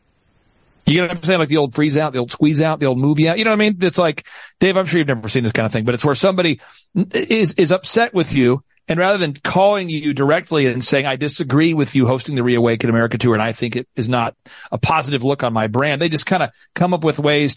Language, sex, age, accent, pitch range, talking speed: English, male, 40-59, American, 135-200 Hz, 275 wpm